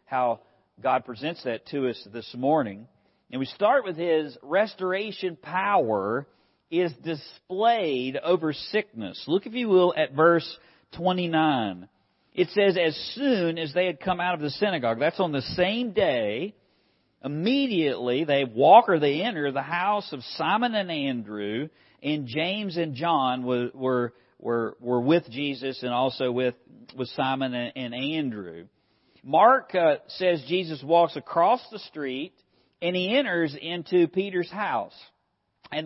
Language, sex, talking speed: English, male, 145 wpm